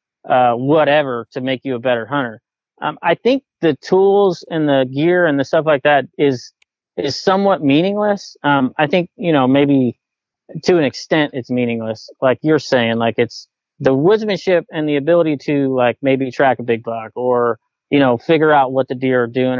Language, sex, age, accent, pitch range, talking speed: English, male, 30-49, American, 130-165 Hz, 195 wpm